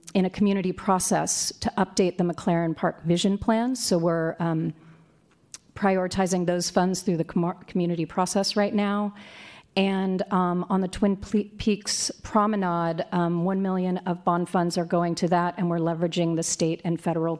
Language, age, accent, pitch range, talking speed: English, 40-59, American, 170-195 Hz, 165 wpm